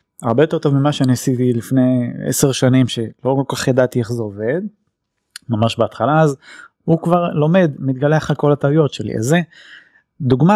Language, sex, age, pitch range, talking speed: Hebrew, male, 30-49, 125-155 Hz, 165 wpm